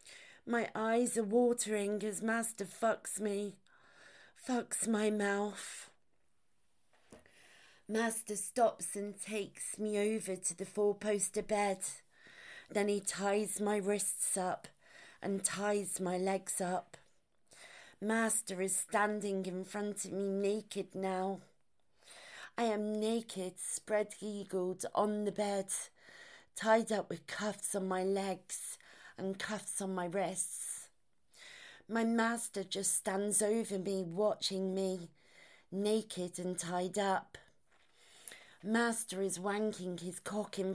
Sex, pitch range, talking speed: female, 190-215 Hz, 115 wpm